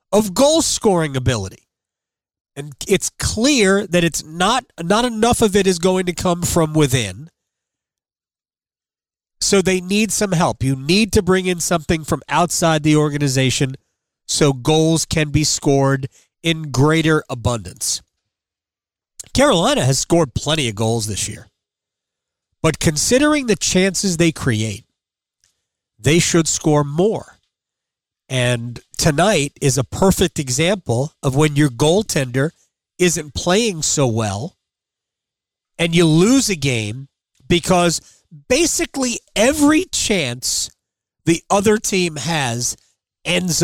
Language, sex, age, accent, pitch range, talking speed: English, male, 40-59, American, 125-185 Hz, 120 wpm